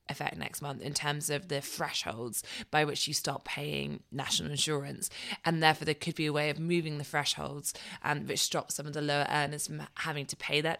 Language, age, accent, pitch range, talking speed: English, 20-39, British, 140-160 Hz, 215 wpm